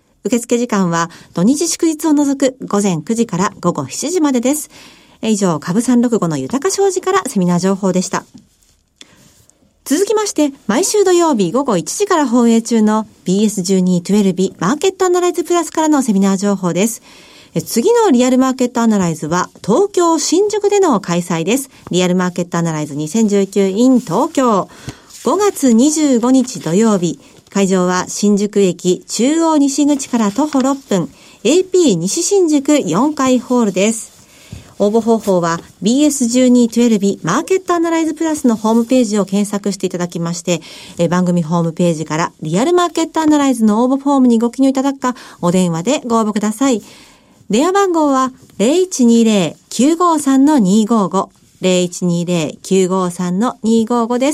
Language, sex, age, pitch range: Japanese, female, 40-59, 190-285 Hz